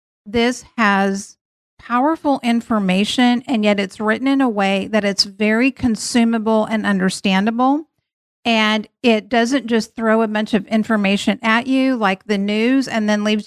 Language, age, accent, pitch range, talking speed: English, 50-69, American, 205-240 Hz, 150 wpm